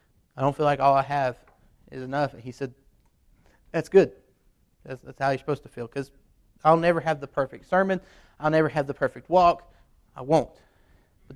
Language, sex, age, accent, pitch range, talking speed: English, male, 30-49, American, 120-180 Hz, 195 wpm